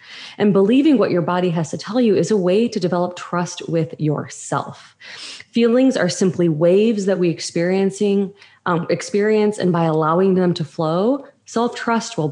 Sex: female